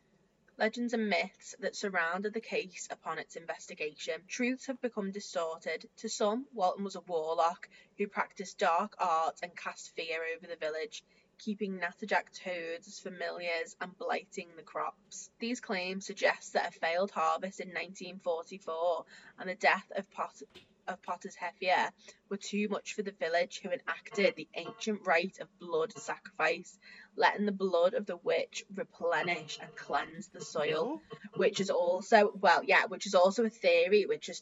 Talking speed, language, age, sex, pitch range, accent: 160 wpm, English, 20-39, female, 175-220 Hz, British